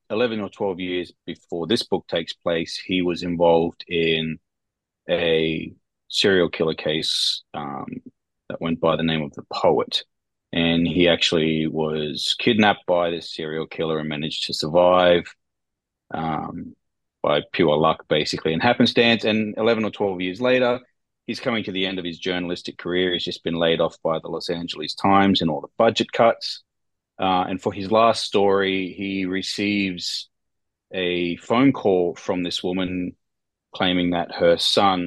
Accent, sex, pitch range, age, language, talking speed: Australian, male, 85-105 Hz, 30-49, English, 160 wpm